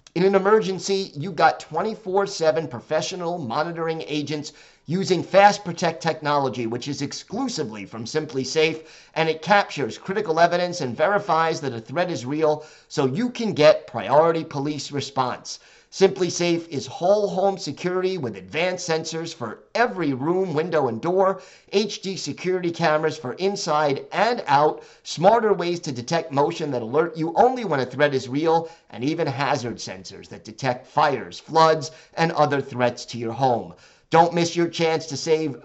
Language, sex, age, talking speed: English, male, 50-69, 160 wpm